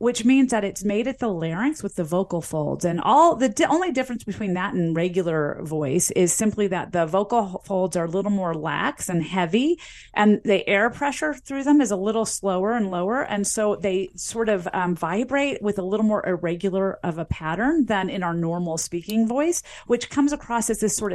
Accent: American